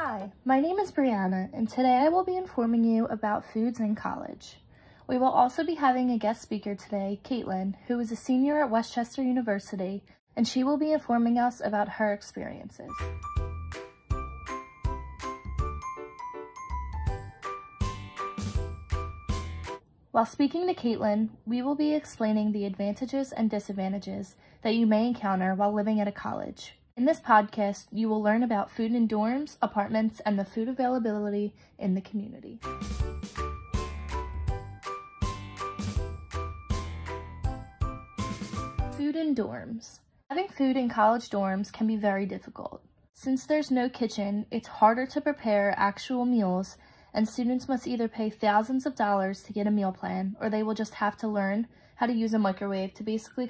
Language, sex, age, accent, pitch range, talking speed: English, female, 20-39, American, 190-245 Hz, 145 wpm